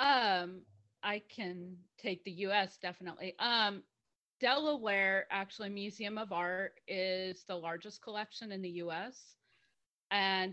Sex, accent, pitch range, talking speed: female, American, 185-235 Hz, 120 wpm